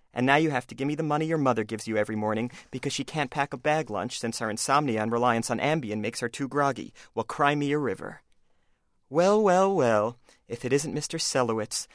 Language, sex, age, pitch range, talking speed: English, male, 30-49, 120-160 Hz, 230 wpm